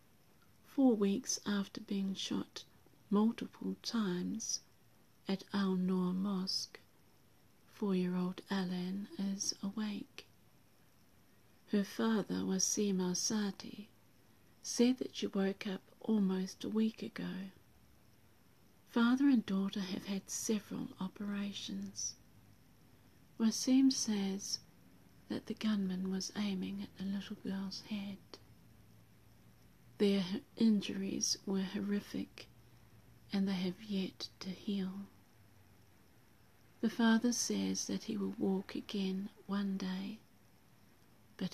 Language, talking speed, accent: English, 95 wpm, British